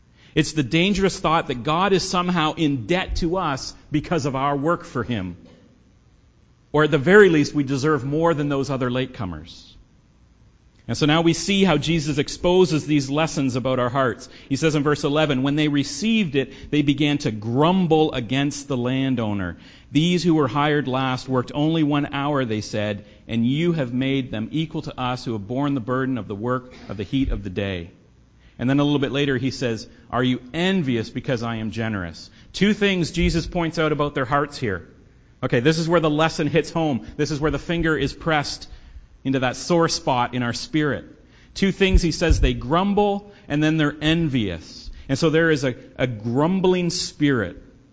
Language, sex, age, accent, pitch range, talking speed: English, male, 50-69, American, 125-160 Hz, 195 wpm